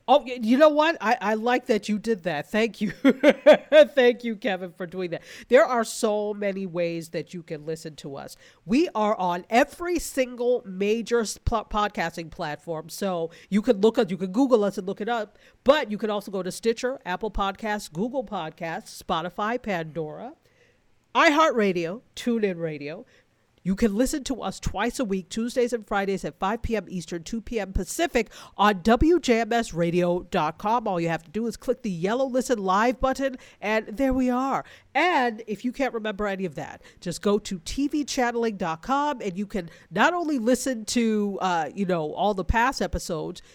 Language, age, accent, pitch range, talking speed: English, 50-69, American, 185-250 Hz, 180 wpm